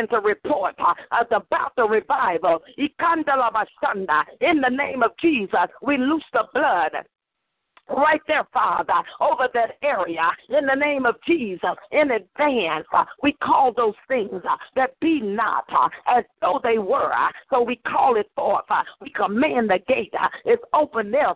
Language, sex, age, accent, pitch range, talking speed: English, female, 50-69, American, 225-315 Hz, 145 wpm